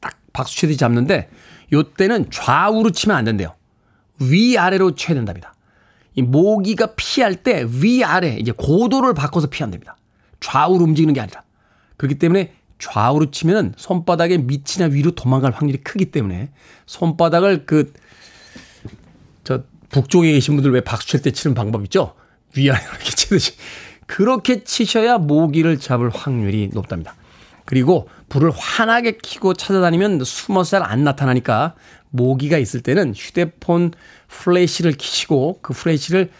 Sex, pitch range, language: male, 120-170 Hz, Korean